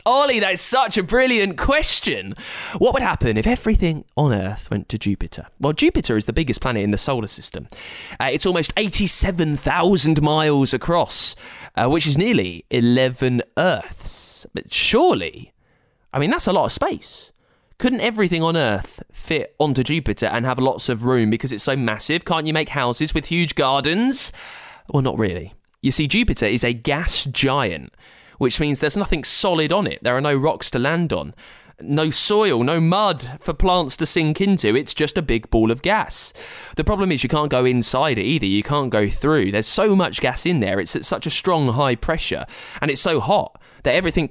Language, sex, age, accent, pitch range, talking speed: English, male, 20-39, British, 120-170 Hz, 190 wpm